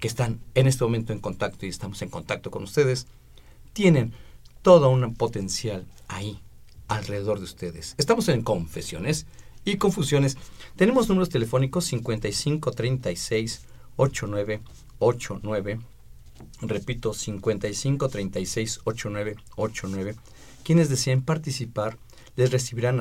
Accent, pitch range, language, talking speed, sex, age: Mexican, 105-145 Hz, Spanish, 100 wpm, male, 50-69